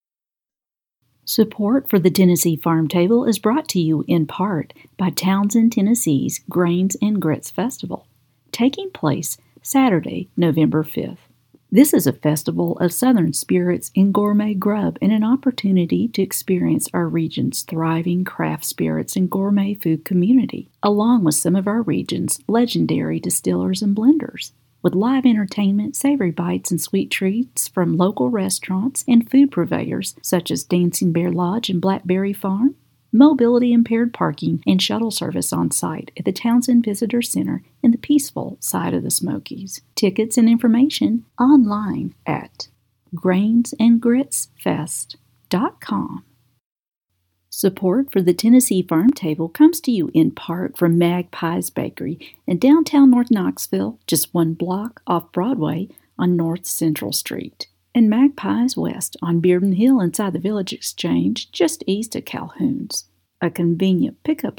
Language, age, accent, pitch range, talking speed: English, 50-69, American, 170-240 Hz, 140 wpm